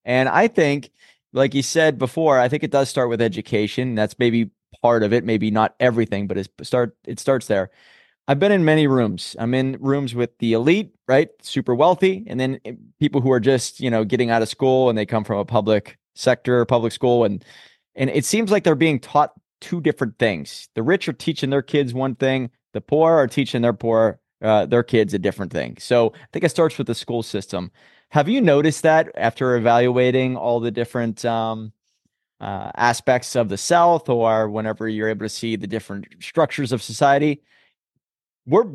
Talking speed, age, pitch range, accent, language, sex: 205 wpm, 20-39, 115-145 Hz, American, English, male